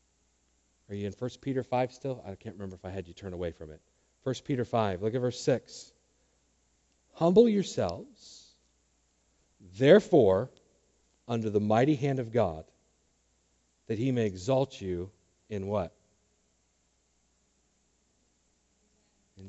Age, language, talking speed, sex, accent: 40-59, English, 130 wpm, male, American